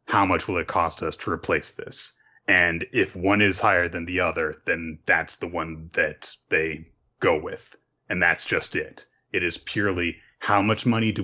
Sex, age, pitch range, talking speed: male, 30-49, 80-100 Hz, 190 wpm